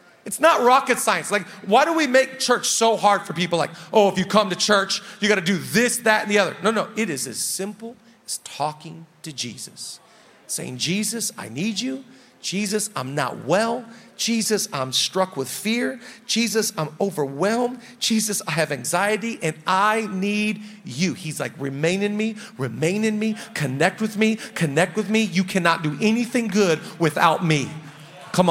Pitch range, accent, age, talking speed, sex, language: 180-235 Hz, American, 40-59, 180 wpm, male, English